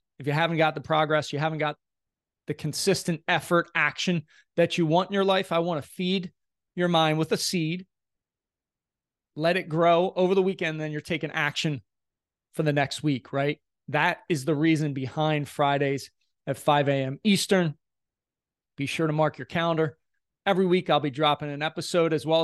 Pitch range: 150-180 Hz